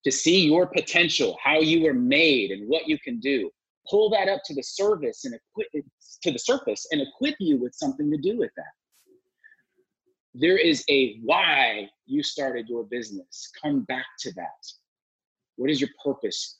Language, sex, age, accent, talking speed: English, male, 30-49, American, 175 wpm